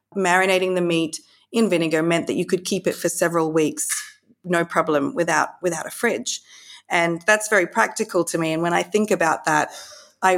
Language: Italian